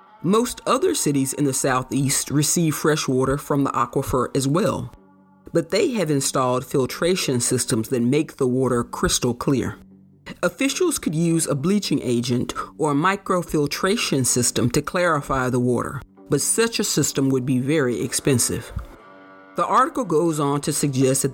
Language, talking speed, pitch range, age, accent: English, 155 wpm, 130-170 Hz, 40-59, American